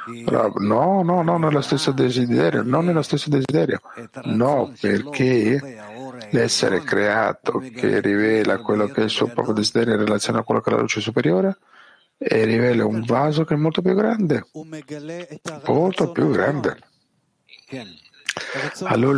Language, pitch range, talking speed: Italian, 115-155 Hz, 150 wpm